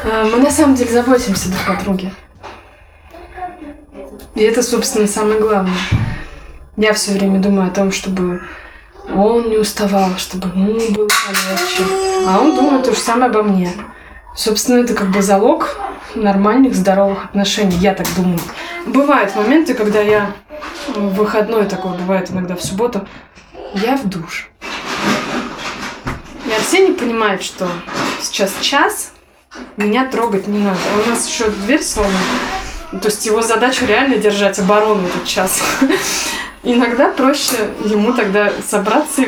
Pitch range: 195-245 Hz